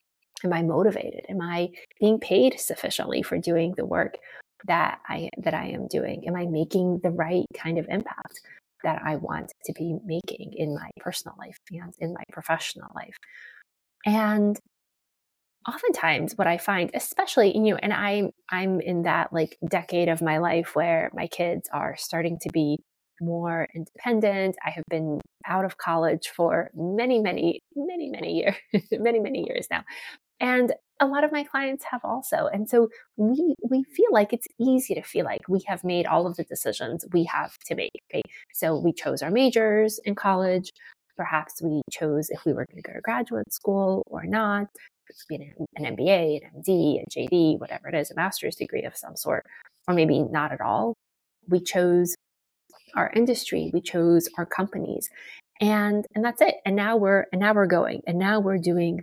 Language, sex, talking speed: English, female, 185 wpm